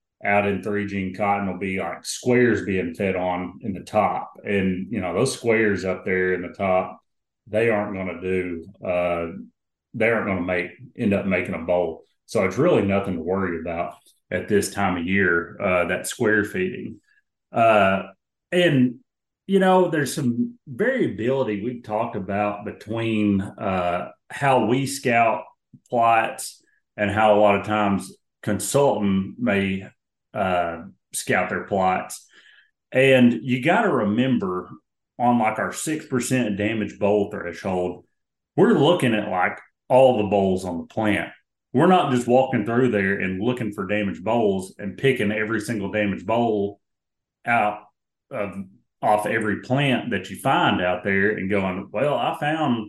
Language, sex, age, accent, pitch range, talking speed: English, male, 30-49, American, 95-120 Hz, 155 wpm